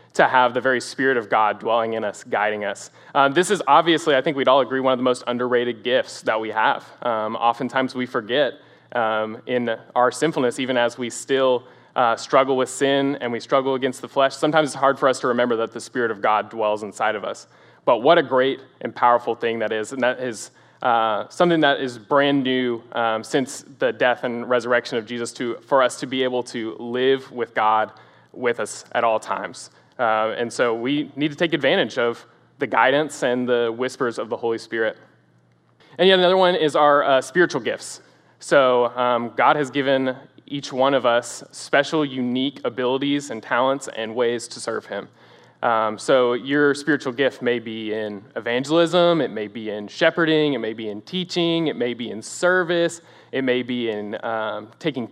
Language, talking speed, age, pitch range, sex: English, 200 wpm, 20-39, 120-145 Hz, male